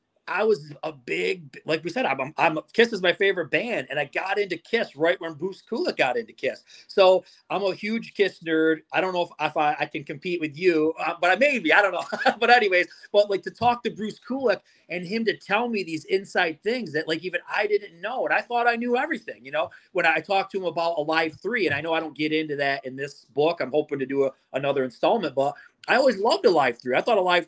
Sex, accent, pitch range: male, American, 155-205 Hz